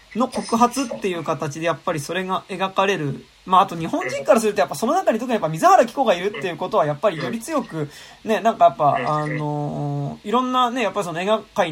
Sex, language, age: male, Japanese, 20-39